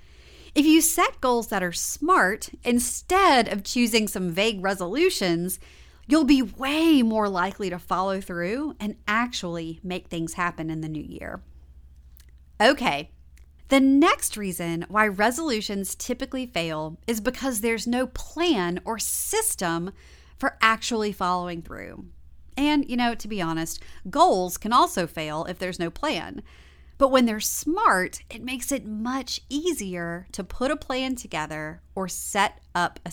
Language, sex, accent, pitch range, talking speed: English, female, American, 160-235 Hz, 145 wpm